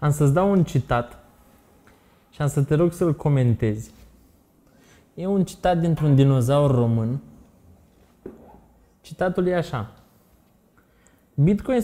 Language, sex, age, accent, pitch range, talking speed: Romanian, male, 20-39, native, 115-170 Hz, 110 wpm